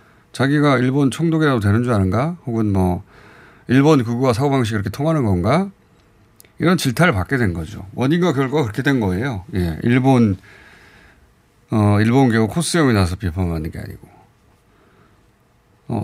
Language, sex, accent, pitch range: Korean, male, native, 100-150 Hz